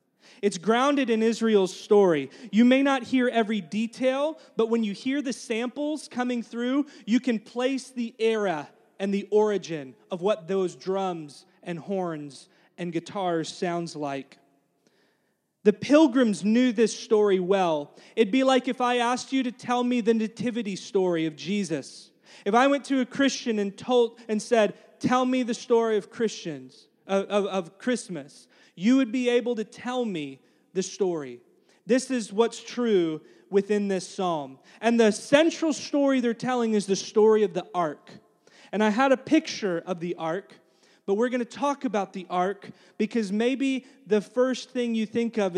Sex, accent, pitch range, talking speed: male, American, 190-245 Hz, 170 wpm